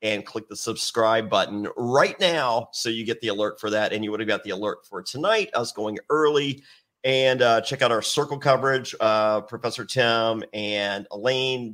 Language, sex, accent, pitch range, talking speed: English, male, American, 105-130 Hz, 200 wpm